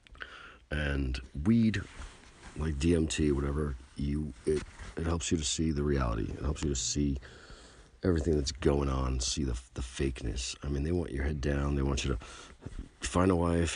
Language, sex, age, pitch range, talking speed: English, male, 50-69, 70-90 Hz, 180 wpm